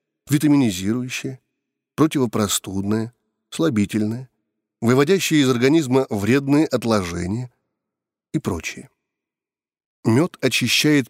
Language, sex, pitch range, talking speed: Russian, male, 110-145 Hz, 65 wpm